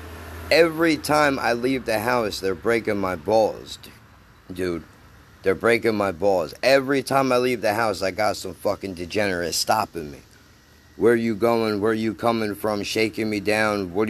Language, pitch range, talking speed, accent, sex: English, 100-135 Hz, 165 wpm, American, male